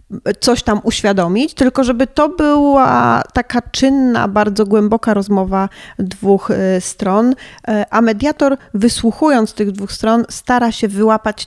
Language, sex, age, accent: Polish, female, 30-49, native